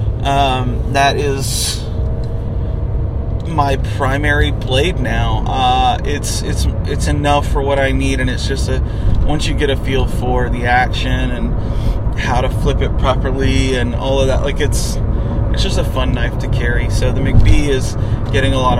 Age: 30-49